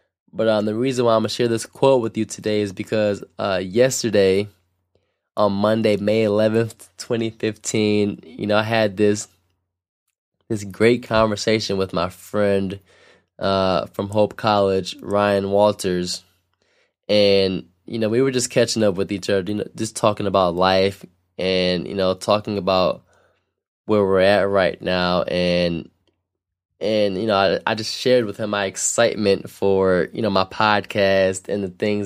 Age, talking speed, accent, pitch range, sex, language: 20-39, 160 wpm, American, 95-110 Hz, male, English